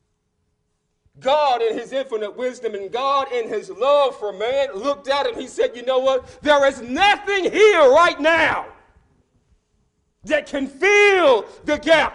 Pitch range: 220-350 Hz